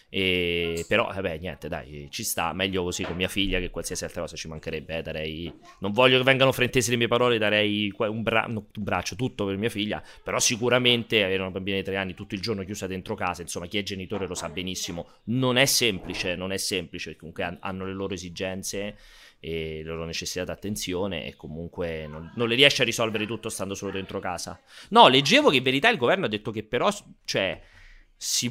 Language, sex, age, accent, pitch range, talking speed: Italian, male, 30-49, native, 95-125 Hz, 210 wpm